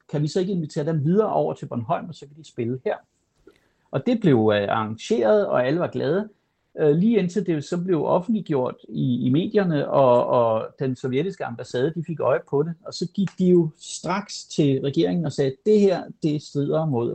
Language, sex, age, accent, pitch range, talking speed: Danish, male, 60-79, native, 130-180 Hz, 200 wpm